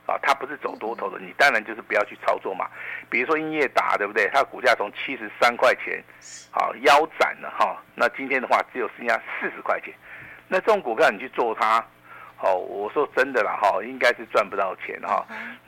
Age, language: 50-69, Chinese